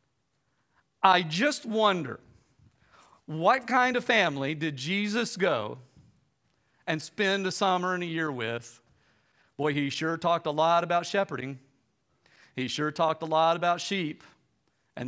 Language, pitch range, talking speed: English, 125-175 Hz, 135 wpm